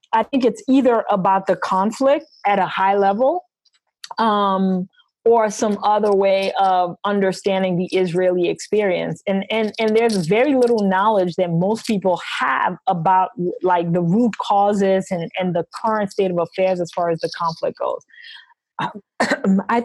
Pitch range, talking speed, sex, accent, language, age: 185-225 Hz, 155 wpm, female, American, English, 20-39